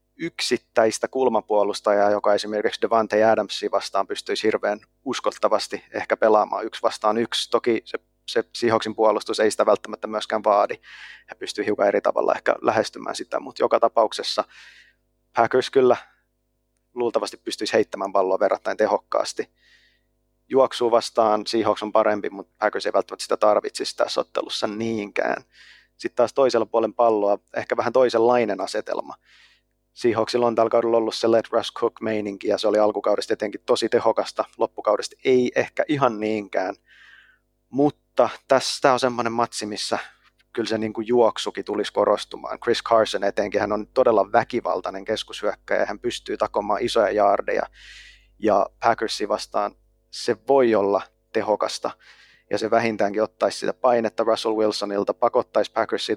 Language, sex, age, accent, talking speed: Finnish, male, 30-49, native, 140 wpm